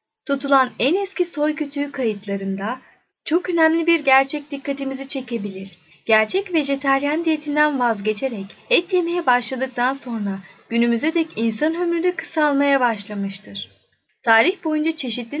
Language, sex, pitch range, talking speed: Turkish, female, 215-300 Hz, 115 wpm